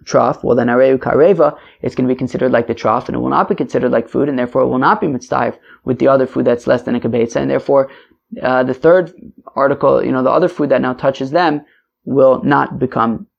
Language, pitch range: English, 120-155 Hz